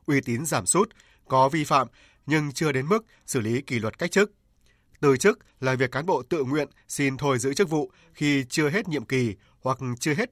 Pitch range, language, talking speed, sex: 125-160 Hz, Vietnamese, 220 wpm, male